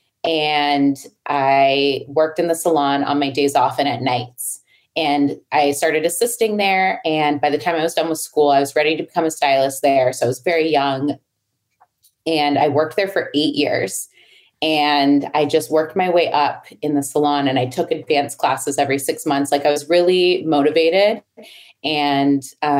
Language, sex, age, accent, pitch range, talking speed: English, female, 30-49, American, 140-170 Hz, 185 wpm